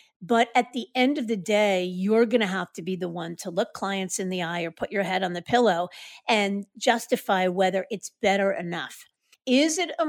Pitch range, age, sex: 190-230 Hz, 50-69, female